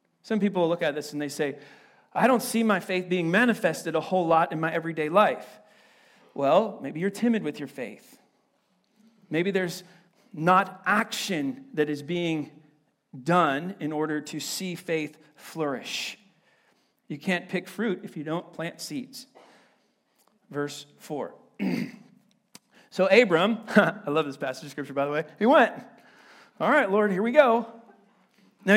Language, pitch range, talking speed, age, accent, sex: English, 150-215 Hz, 155 wpm, 40-59, American, male